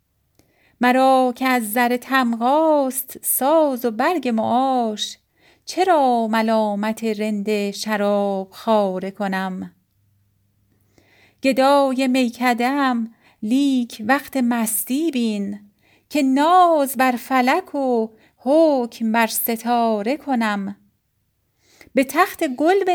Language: Persian